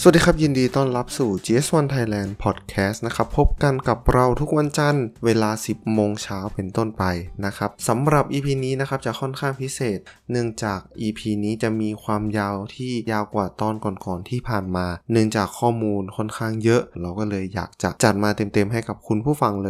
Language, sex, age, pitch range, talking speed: English, male, 20-39, 100-125 Hz, 35 wpm